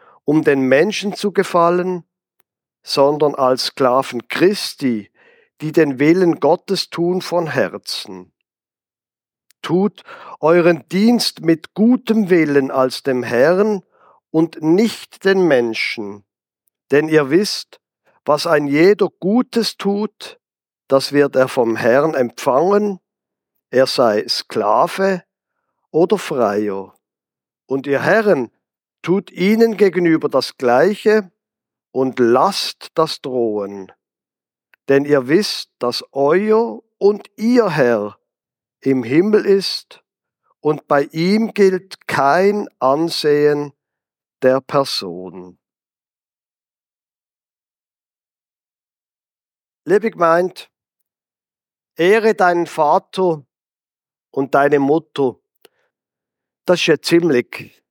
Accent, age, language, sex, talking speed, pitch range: German, 50-69, German, male, 95 wpm, 135-195 Hz